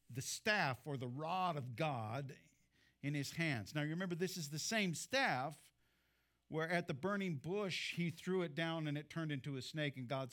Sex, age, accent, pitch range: male, 50-69, American, 135-190 Hz